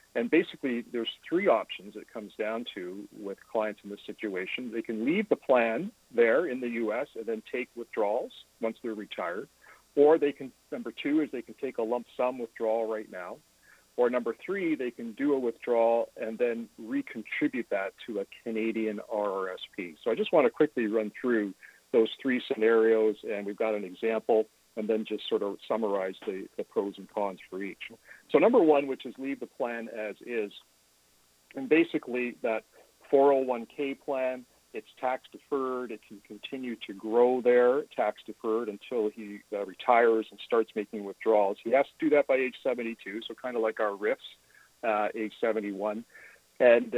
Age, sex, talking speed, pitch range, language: 50-69, male, 180 wpm, 110-130 Hz, English